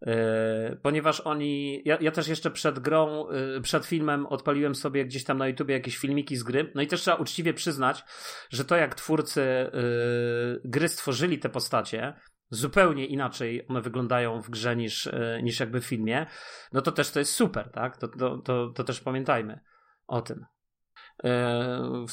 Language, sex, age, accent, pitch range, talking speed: Polish, male, 30-49, native, 130-155 Hz, 180 wpm